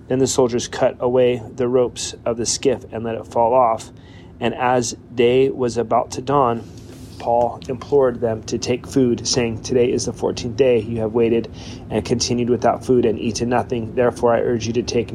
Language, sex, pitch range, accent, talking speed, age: English, male, 115-125 Hz, American, 200 wpm, 30-49